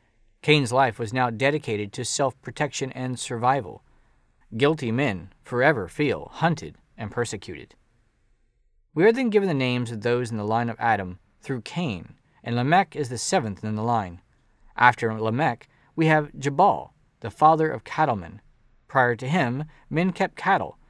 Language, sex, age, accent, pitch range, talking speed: English, male, 40-59, American, 115-155 Hz, 155 wpm